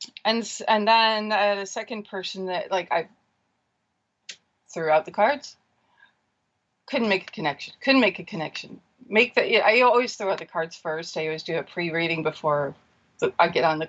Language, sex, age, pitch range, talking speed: English, female, 30-49, 175-245 Hz, 180 wpm